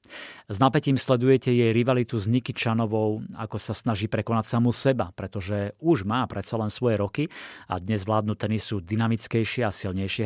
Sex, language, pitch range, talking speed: male, Slovak, 105-130 Hz, 165 wpm